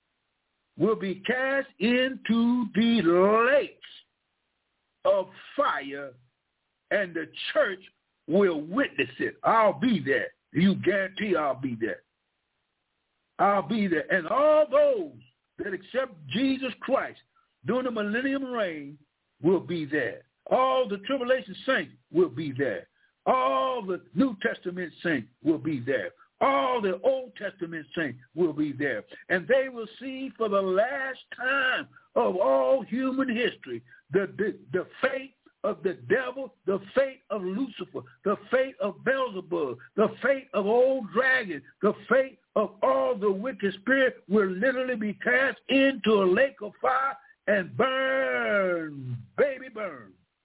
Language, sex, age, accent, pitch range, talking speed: English, male, 60-79, American, 190-265 Hz, 135 wpm